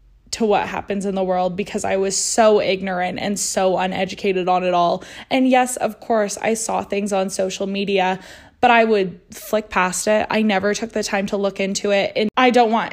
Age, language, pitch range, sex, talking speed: 20-39, English, 195-225 Hz, female, 215 wpm